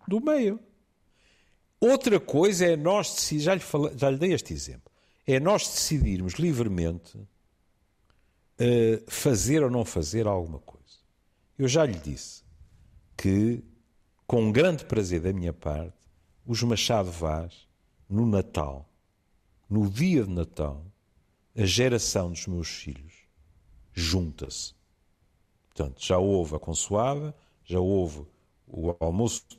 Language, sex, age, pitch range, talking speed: Portuguese, male, 50-69, 85-145 Hz, 120 wpm